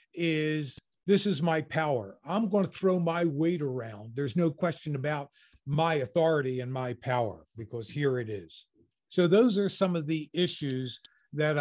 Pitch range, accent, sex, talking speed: 145-185 Hz, American, male, 170 wpm